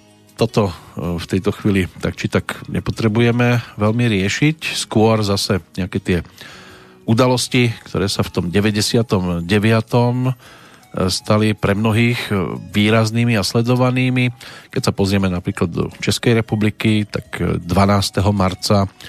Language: Slovak